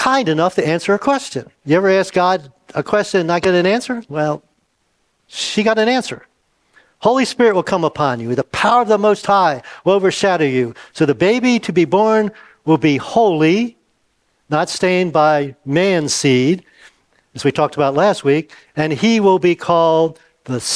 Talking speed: 180 wpm